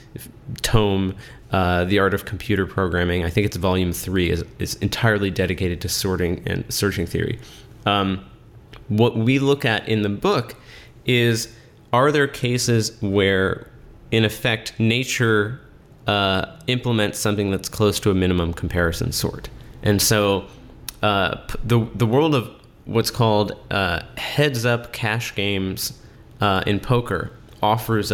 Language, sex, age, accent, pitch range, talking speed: English, male, 30-49, American, 100-120 Hz, 135 wpm